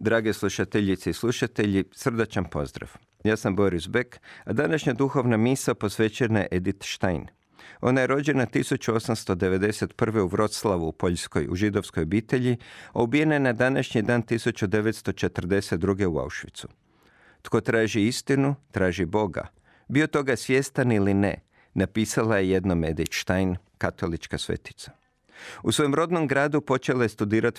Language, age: Croatian, 50-69